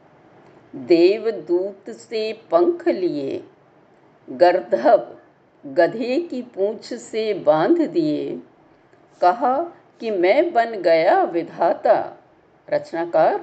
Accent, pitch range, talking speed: native, 220-330 Hz, 85 wpm